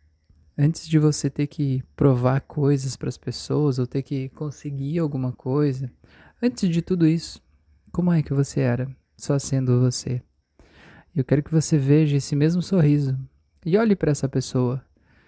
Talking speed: 160 wpm